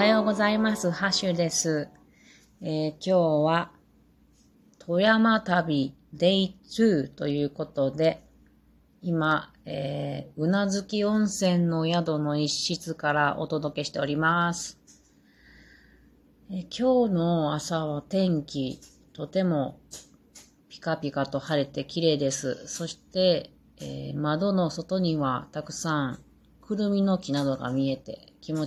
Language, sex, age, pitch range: Japanese, female, 30-49, 140-180 Hz